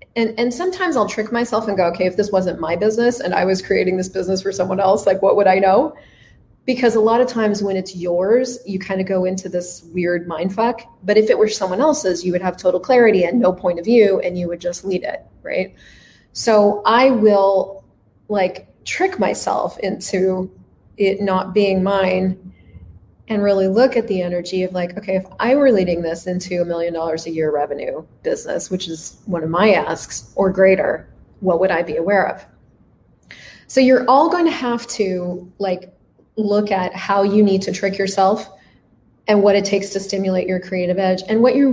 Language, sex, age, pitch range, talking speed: English, female, 30-49, 180-215 Hz, 205 wpm